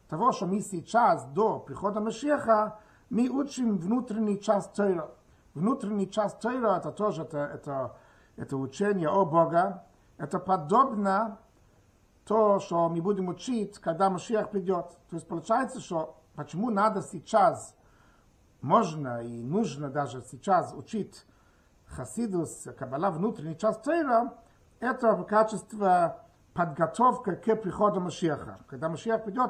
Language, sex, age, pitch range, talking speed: Russian, male, 50-69, 145-210 Hz, 120 wpm